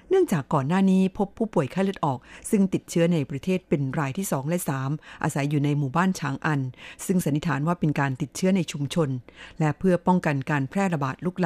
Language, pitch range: Thai, 145-180 Hz